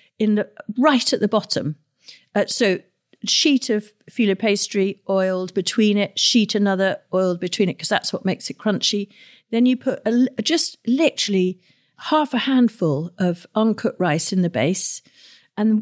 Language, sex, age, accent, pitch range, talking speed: English, female, 50-69, British, 185-230 Hz, 160 wpm